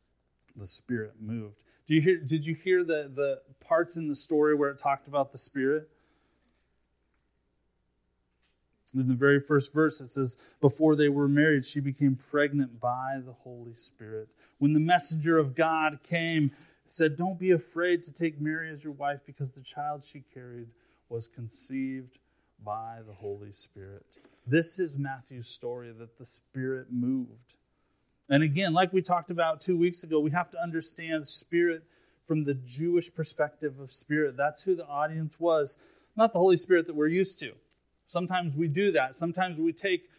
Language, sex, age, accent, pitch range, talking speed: English, male, 30-49, American, 125-160 Hz, 170 wpm